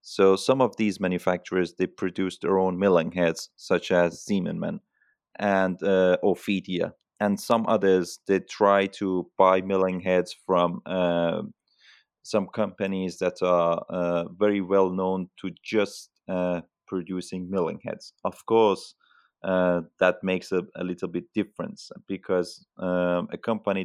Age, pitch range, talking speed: 30-49, 90-95 Hz, 140 wpm